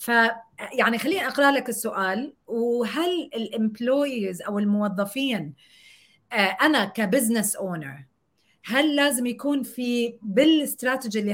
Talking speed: 95 wpm